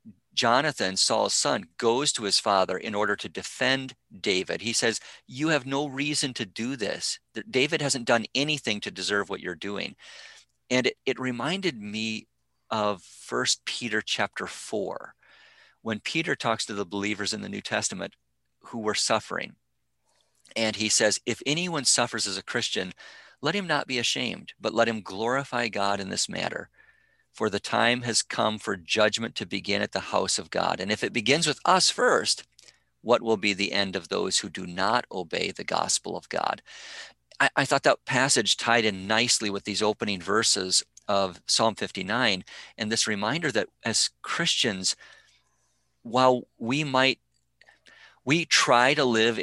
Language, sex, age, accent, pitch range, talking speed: English, male, 50-69, American, 100-125 Hz, 170 wpm